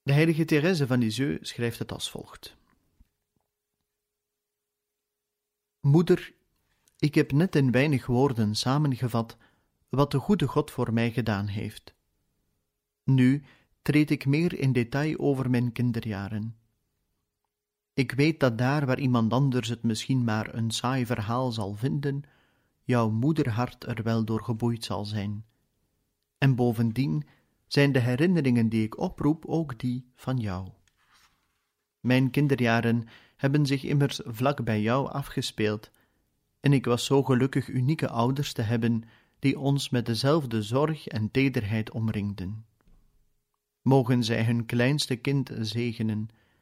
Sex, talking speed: male, 130 wpm